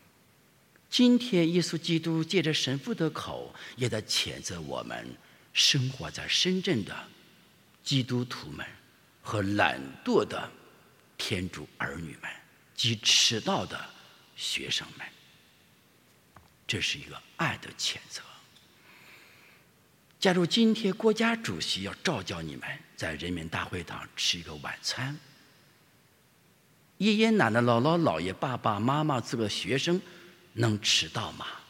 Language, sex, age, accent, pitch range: English, male, 50-69, Chinese, 125-195 Hz